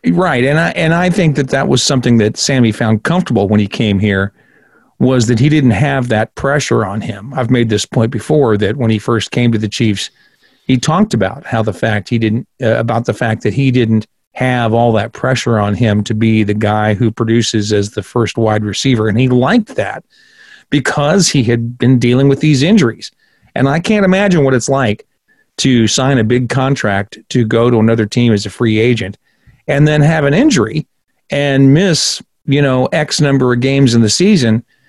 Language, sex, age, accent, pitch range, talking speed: English, male, 40-59, American, 115-140 Hz, 210 wpm